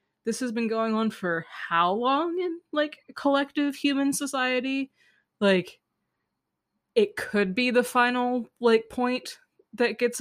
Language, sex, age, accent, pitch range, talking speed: English, female, 20-39, American, 175-215 Hz, 135 wpm